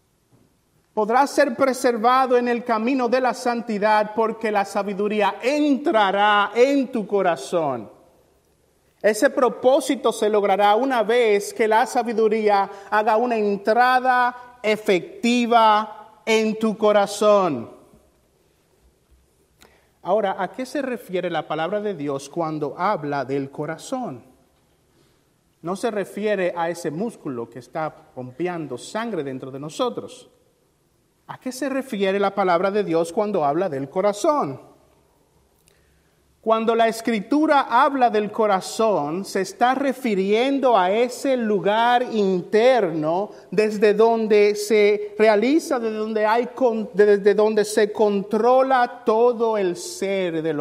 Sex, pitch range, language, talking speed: male, 190-235 Hz, Spanish, 115 wpm